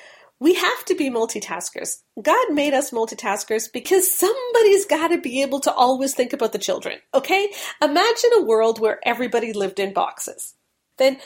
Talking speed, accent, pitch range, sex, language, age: 165 wpm, American, 215-300 Hz, female, English, 40-59